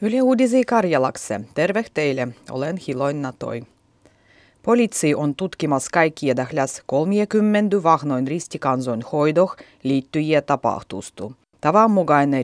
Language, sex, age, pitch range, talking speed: Finnish, female, 30-49, 130-180 Hz, 95 wpm